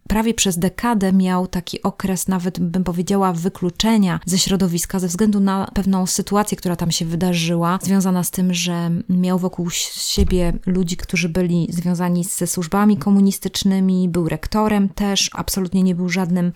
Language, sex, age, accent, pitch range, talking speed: Polish, female, 20-39, native, 175-200 Hz, 150 wpm